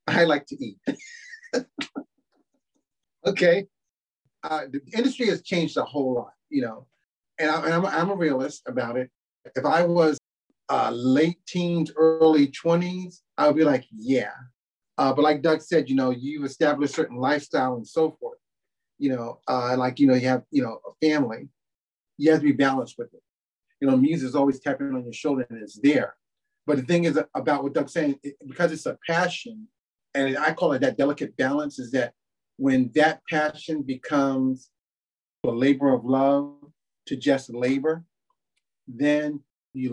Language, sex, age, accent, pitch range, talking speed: English, male, 40-59, American, 130-170 Hz, 175 wpm